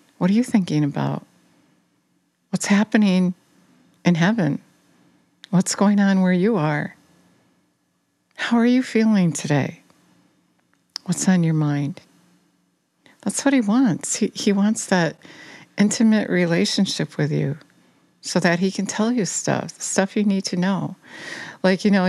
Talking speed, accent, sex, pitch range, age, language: 140 wpm, American, female, 165-200 Hz, 60-79, English